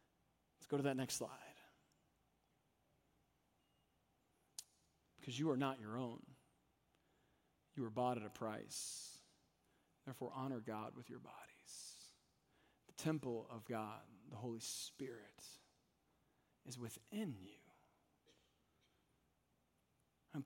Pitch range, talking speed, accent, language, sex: 145-240 Hz, 100 wpm, American, English, male